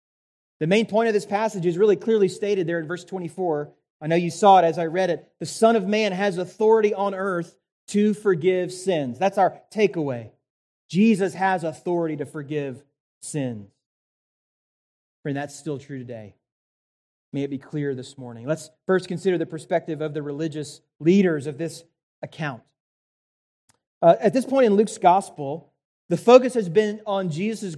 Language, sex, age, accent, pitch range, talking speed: English, male, 30-49, American, 160-220 Hz, 170 wpm